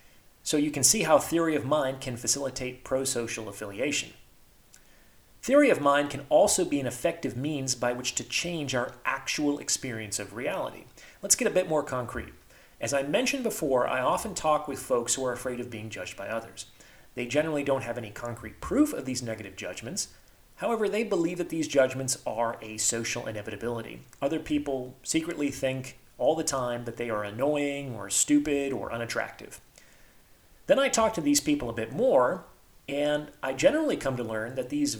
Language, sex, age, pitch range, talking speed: English, male, 30-49, 120-165 Hz, 180 wpm